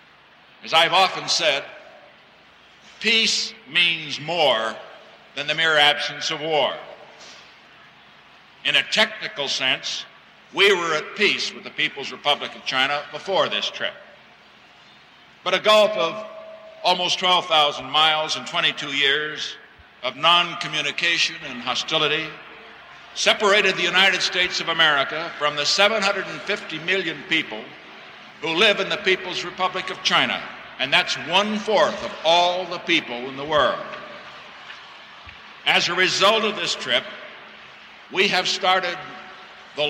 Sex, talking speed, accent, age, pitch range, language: male, 125 wpm, American, 60-79, 155-195 Hz, English